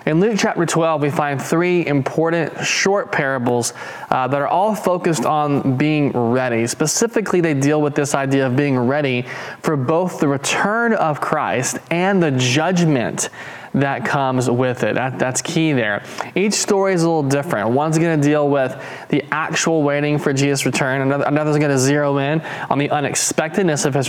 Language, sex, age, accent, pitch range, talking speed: English, male, 20-39, American, 135-170 Hz, 175 wpm